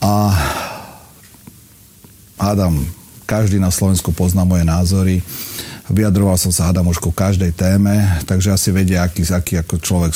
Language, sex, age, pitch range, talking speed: Slovak, male, 40-59, 85-105 Hz, 125 wpm